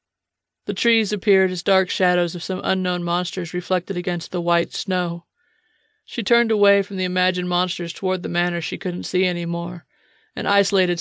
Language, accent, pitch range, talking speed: English, American, 175-200 Hz, 170 wpm